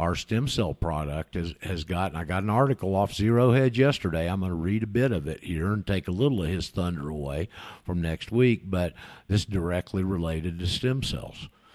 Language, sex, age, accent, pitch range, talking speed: English, male, 50-69, American, 85-110 Hz, 220 wpm